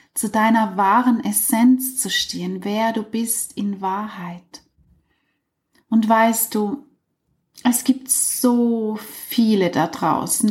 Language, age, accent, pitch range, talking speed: German, 30-49, German, 195-250 Hz, 115 wpm